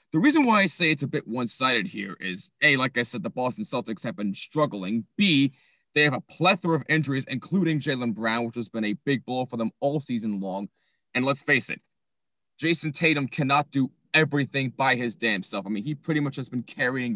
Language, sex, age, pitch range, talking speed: English, male, 30-49, 120-155 Hz, 220 wpm